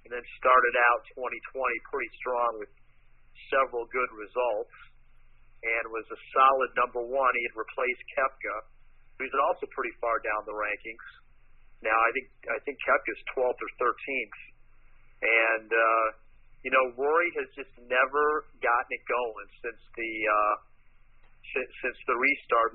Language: English